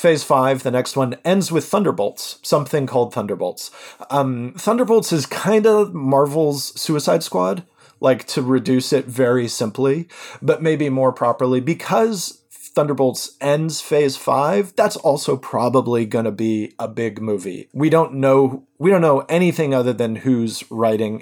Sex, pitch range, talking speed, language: male, 115-150 Hz, 155 wpm, English